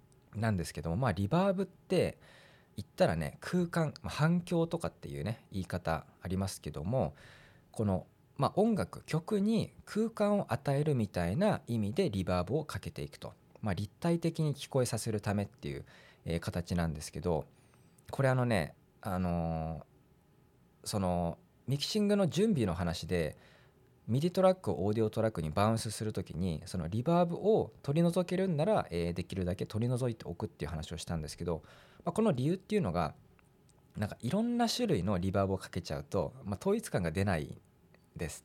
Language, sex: Japanese, male